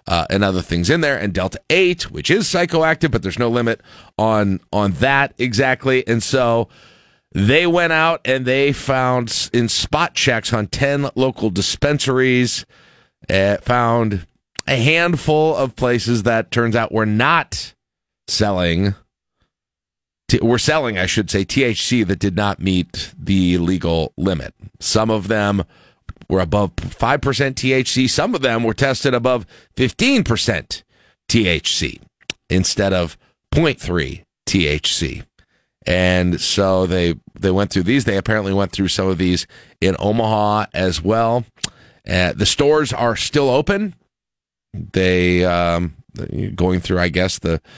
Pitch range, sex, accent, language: 90-130 Hz, male, American, English